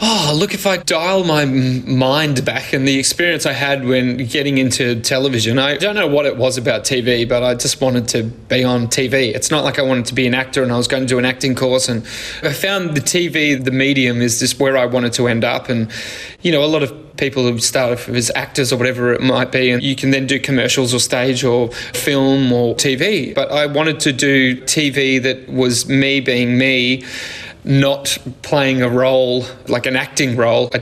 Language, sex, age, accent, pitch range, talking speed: English, male, 20-39, Australian, 125-145 Hz, 225 wpm